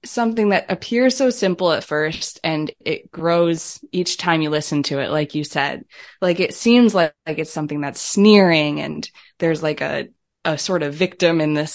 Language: English